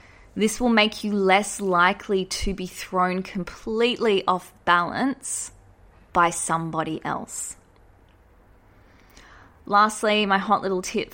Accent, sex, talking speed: Australian, female, 110 wpm